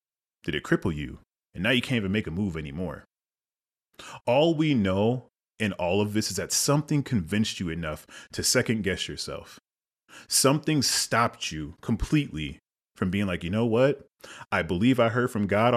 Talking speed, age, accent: 175 wpm, 30-49, American